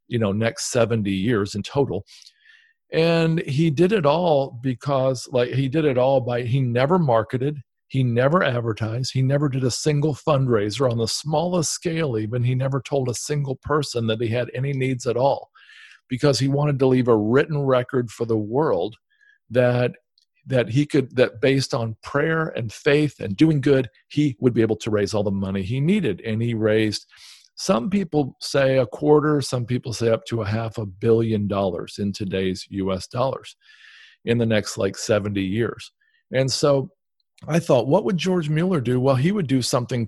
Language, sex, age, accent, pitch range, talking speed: English, male, 50-69, American, 115-150 Hz, 190 wpm